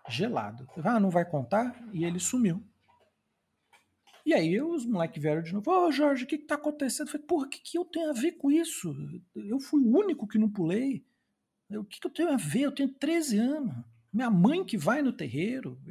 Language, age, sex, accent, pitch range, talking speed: Portuguese, 40-59, male, Brazilian, 150-235 Hz, 220 wpm